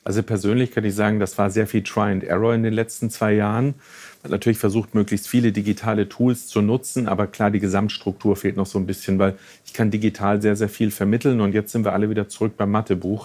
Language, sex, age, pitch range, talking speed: German, male, 40-59, 100-115 Hz, 240 wpm